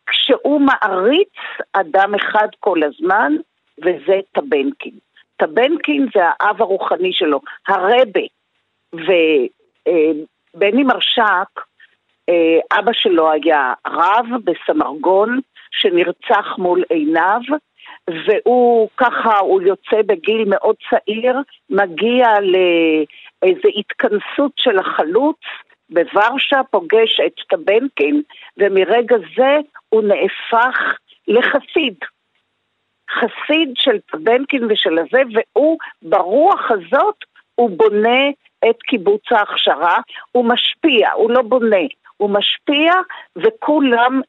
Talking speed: 90 wpm